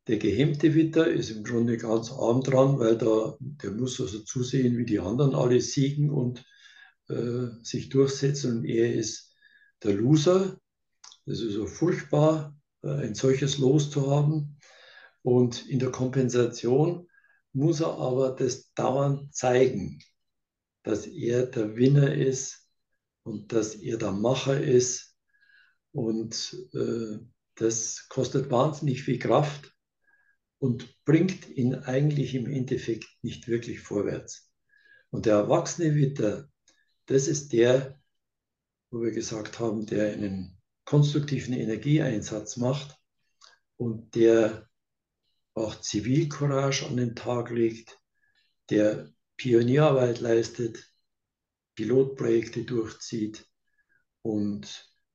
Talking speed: 115 wpm